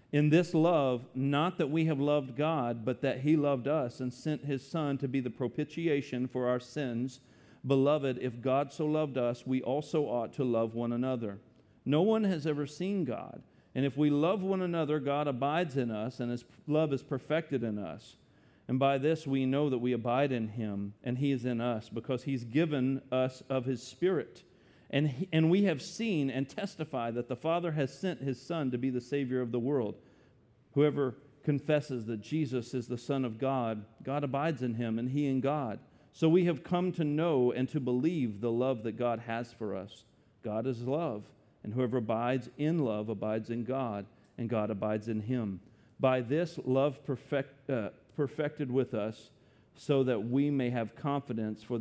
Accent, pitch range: American, 120-150 Hz